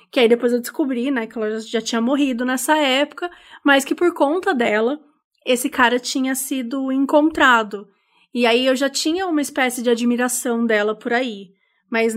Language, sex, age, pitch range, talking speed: Portuguese, female, 20-39, 235-295 Hz, 180 wpm